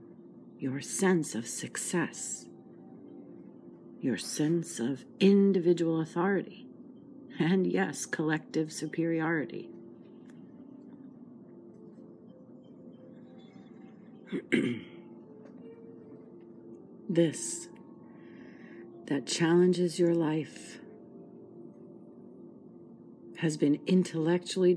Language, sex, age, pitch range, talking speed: English, female, 50-69, 145-185 Hz, 50 wpm